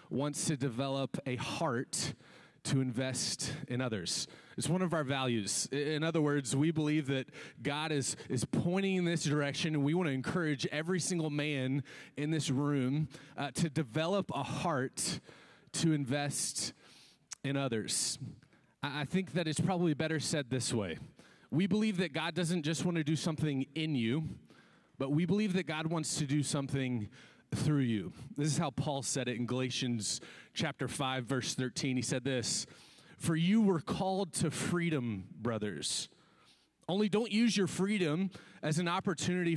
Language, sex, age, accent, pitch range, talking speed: English, male, 30-49, American, 135-170 Hz, 165 wpm